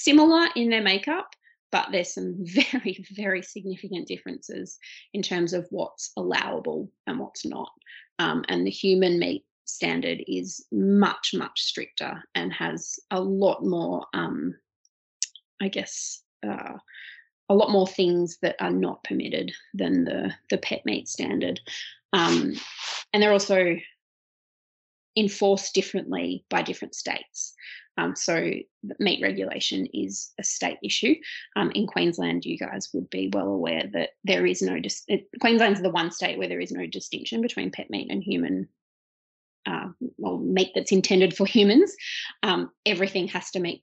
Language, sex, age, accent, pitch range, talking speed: English, female, 30-49, Australian, 175-225 Hz, 150 wpm